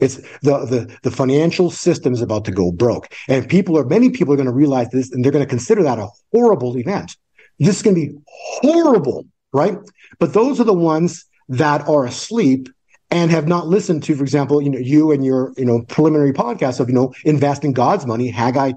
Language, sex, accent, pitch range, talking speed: English, male, American, 125-170 Hz, 220 wpm